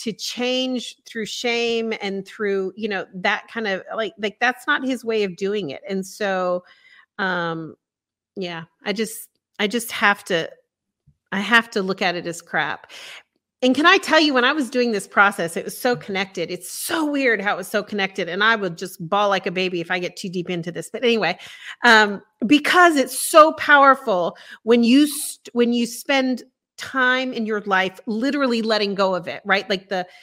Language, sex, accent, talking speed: English, female, American, 200 wpm